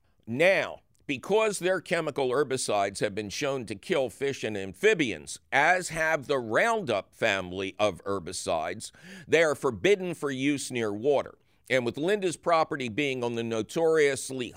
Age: 50-69